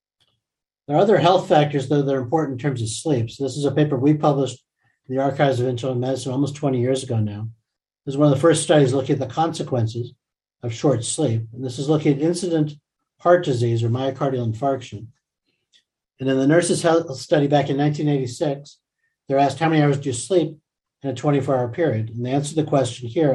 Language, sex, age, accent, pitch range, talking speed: English, male, 60-79, American, 125-150 Hz, 215 wpm